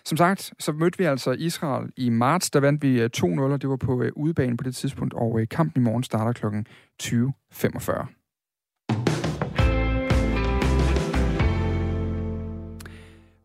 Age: 30-49